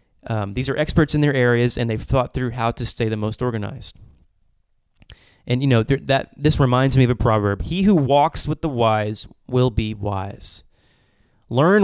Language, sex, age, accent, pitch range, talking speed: English, male, 30-49, American, 110-130 Hz, 195 wpm